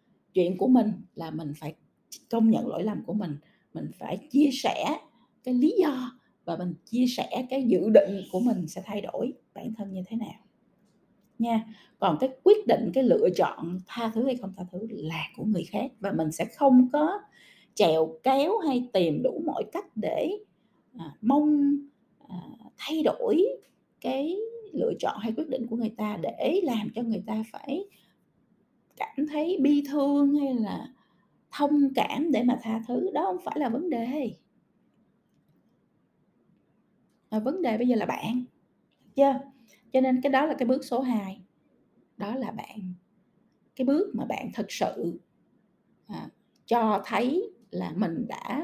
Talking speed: 170 wpm